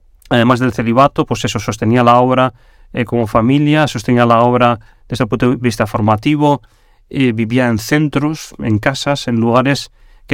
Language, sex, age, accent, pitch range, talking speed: Spanish, male, 30-49, Spanish, 115-140 Hz, 170 wpm